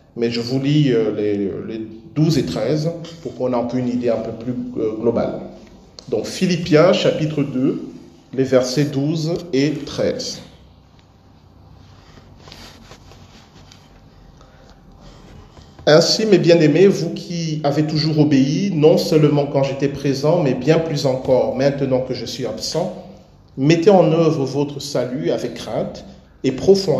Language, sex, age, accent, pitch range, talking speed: French, male, 40-59, French, 120-155 Hz, 125 wpm